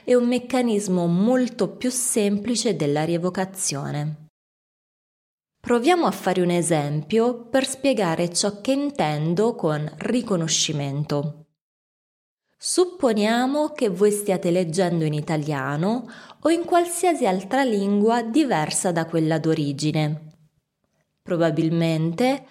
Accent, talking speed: native, 100 wpm